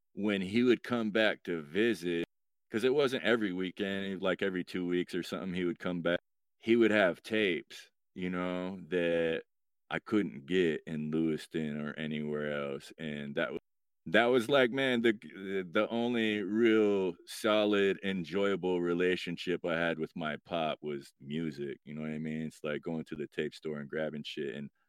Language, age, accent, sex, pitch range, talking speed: English, 30-49, American, male, 80-105 Hz, 180 wpm